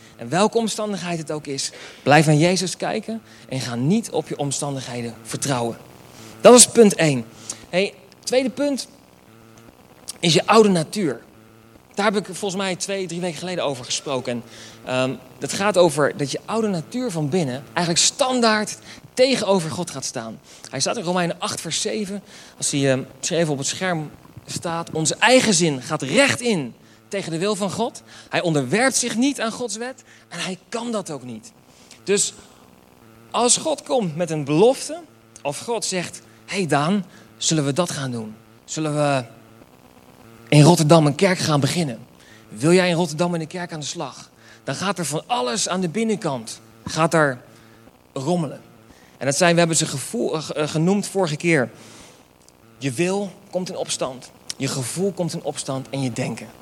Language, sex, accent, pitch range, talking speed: Dutch, male, Dutch, 130-195 Hz, 175 wpm